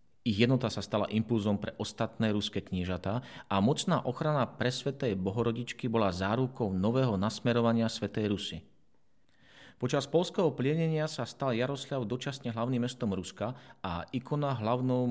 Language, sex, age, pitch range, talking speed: Slovak, male, 40-59, 100-130 Hz, 130 wpm